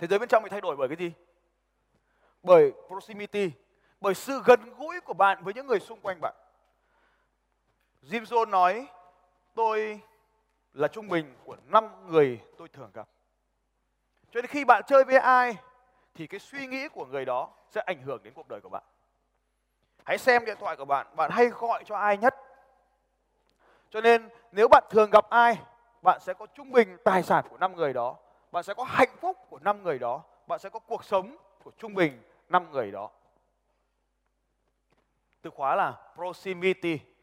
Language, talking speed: Vietnamese, 180 wpm